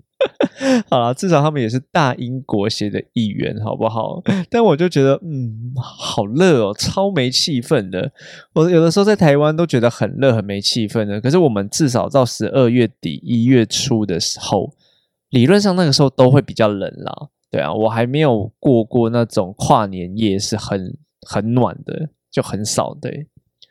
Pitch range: 110-155 Hz